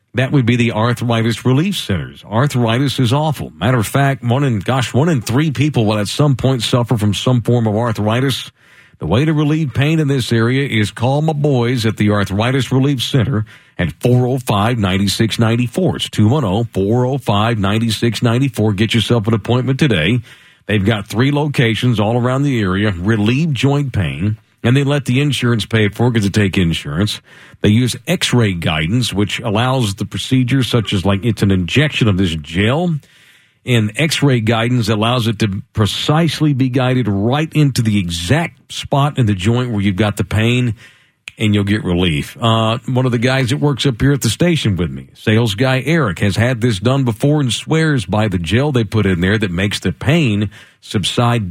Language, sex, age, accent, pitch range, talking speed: English, male, 50-69, American, 105-135 Hz, 185 wpm